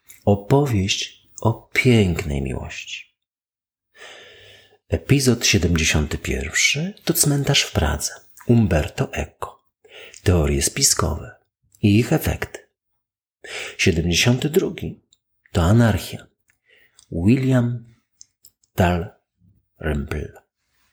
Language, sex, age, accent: Polish, male, 50-69, native